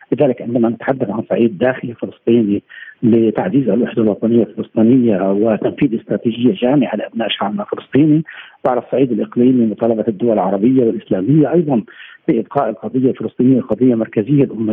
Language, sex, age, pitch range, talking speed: Arabic, male, 50-69, 110-130 Hz, 125 wpm